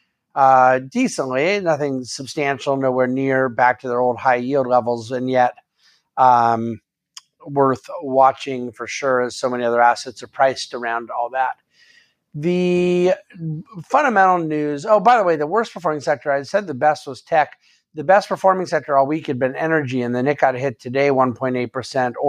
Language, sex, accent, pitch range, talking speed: English, male, American, 125-160 Hz, 170 wpm